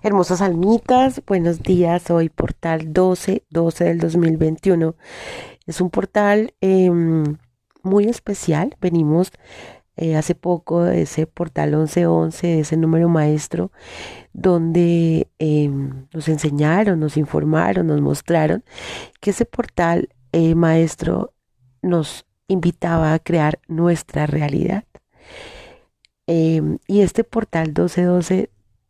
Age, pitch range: 30-49, 155-185 Hz